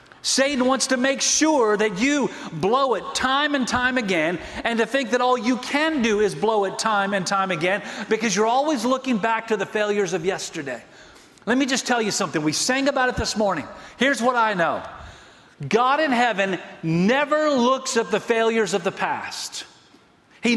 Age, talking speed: 40-59, 195 wpm